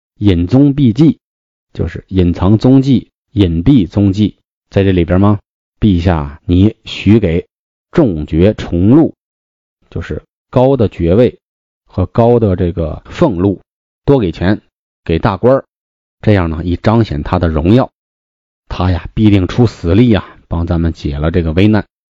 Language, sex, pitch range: Chinese, male, 85-115 Hz